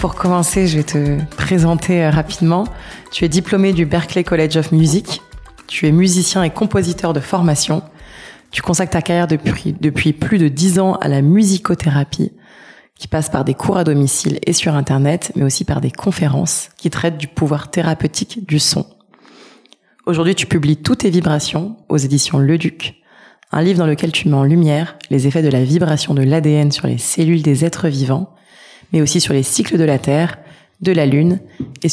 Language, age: French, 20-39